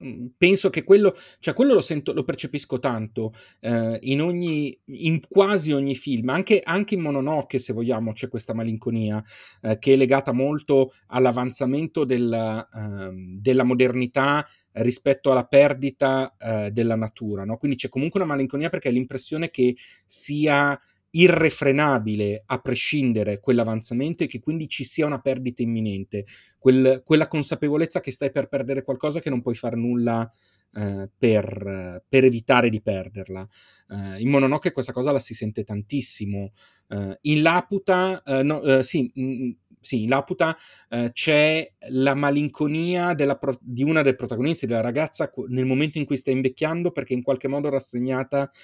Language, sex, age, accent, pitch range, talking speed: Italian, male, 30-49, native, 115-140 Hz, 160 wpm